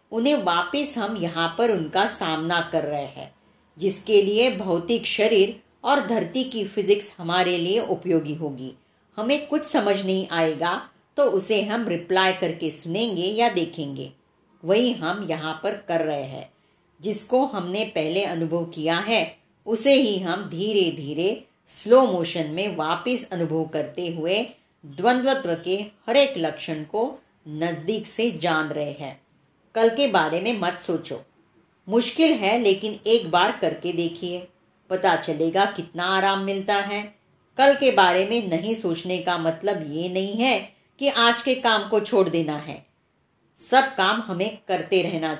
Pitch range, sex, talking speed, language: 170-225 Hz, female, 150 wpm, Marathi